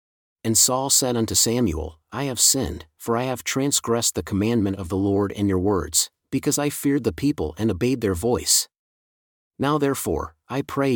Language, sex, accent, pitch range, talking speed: English, male, American, 95-130 Hz, 180 wpm